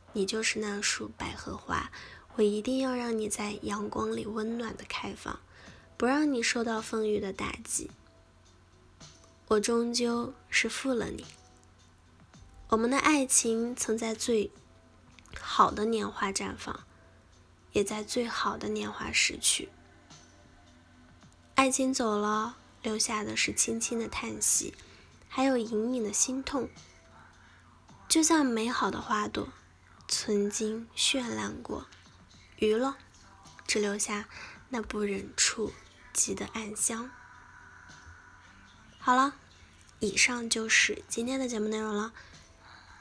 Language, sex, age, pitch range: Chinese, female, 10-29, 205-240 Hz